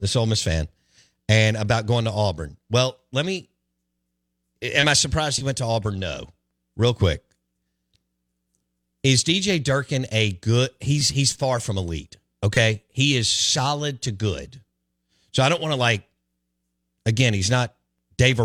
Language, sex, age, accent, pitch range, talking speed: English, male, 50-69, American, 75-125 Hz, 155 wpm